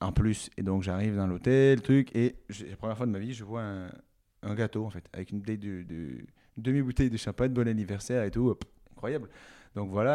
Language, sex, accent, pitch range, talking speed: French, male, French, 100-125 Hz, 225 wpm